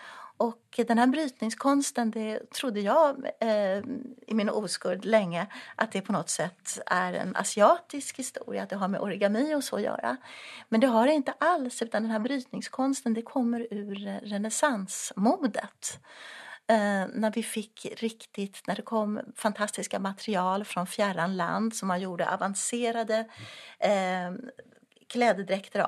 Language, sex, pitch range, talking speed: Swedish, female, 195-240 Hz, 135 wpm